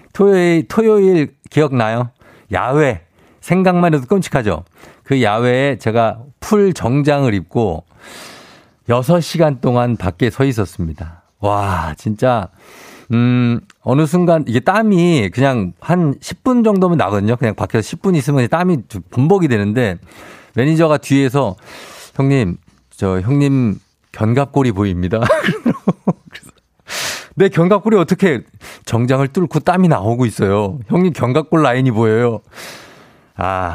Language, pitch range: Korean, 100-140 Hz